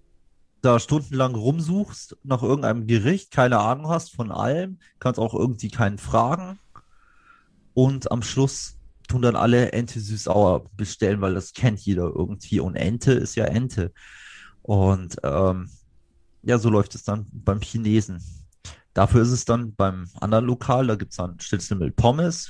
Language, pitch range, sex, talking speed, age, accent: German, 100-120 Hz, male, 155 wpm, 30-49, German